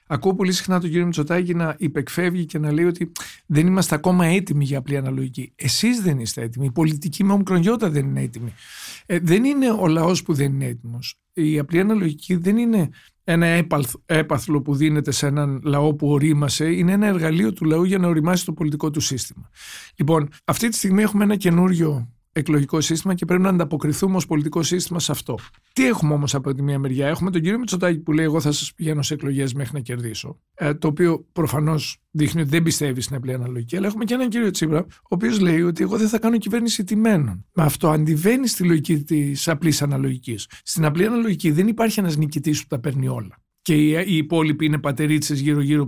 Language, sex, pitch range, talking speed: Greek, male, 145-180 Hz, 205 wpm